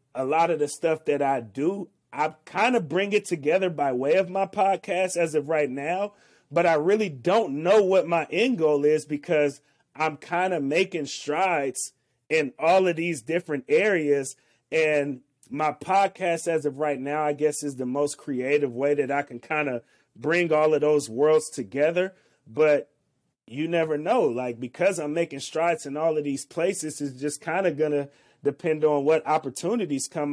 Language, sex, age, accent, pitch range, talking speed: English, male, 30-49, American, 130-160 Hz, 190 wpm